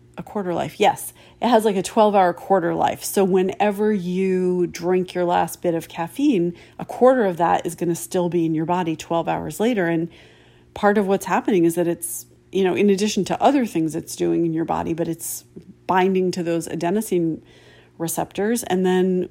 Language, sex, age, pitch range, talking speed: English, female, 40-59, 160-195 Hz, 200 wpm